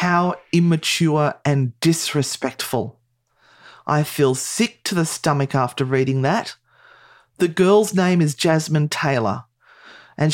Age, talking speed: 40-59, 115 wpm